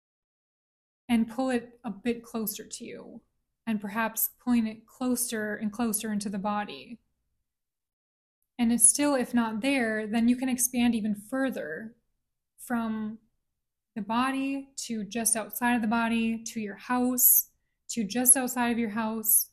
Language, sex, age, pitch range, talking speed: English, female, 20-39, 220-250 Hz, 150 wpm